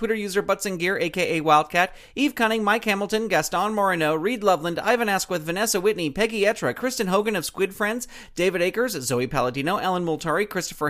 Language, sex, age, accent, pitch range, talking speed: English, male, 40-59, American, 170-220 Hz, 180 wpm